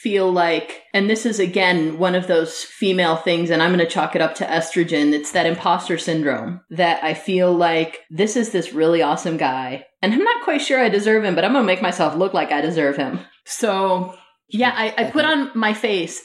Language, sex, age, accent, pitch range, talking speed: English, female, 30-49, American, 170-205 Hz, 225 wpm